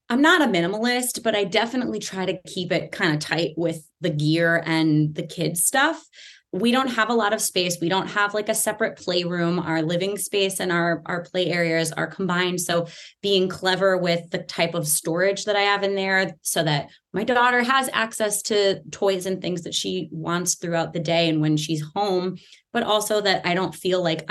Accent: American